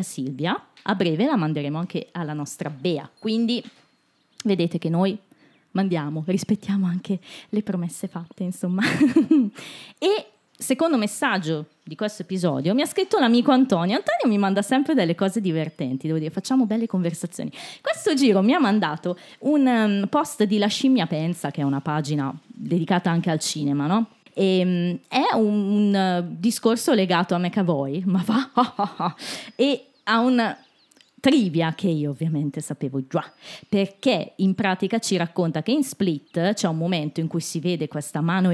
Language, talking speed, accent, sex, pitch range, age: Italian, 160 wpm, native, female, 165-230 Hz, 20-39